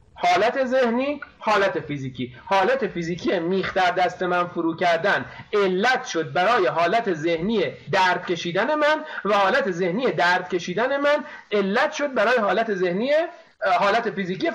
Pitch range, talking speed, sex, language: 180-260 Hz, 130 wpm, male, Persian